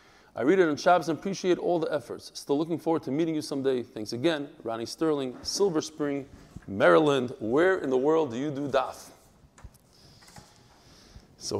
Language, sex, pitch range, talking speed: English, male, 135-195 Hz, 170 wpm